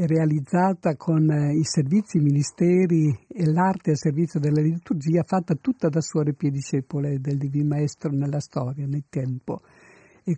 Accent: native